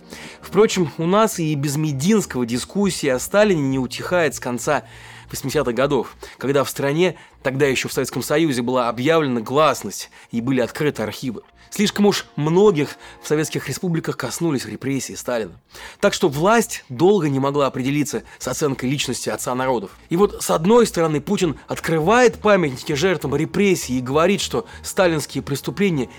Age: 30-49